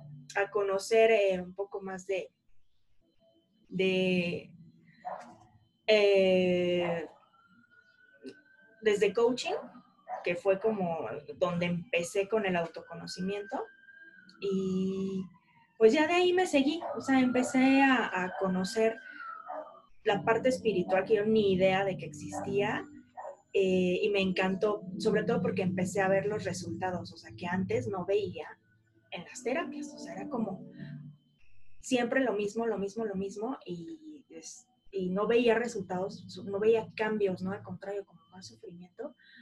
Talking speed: 130 wpm